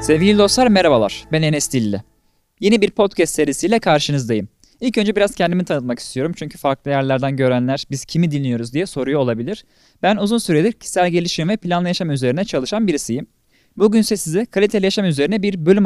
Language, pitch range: Turkish, 135-210 Hz